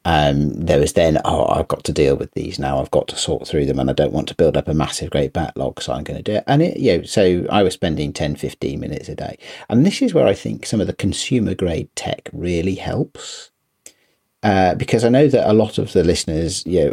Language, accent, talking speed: English, British, 260 wpm